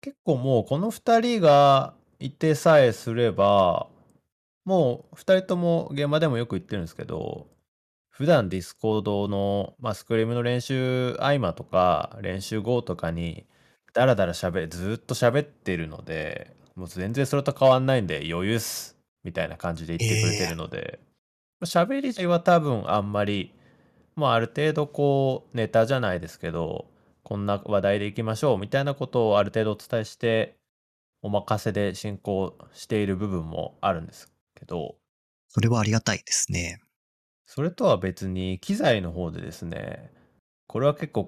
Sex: male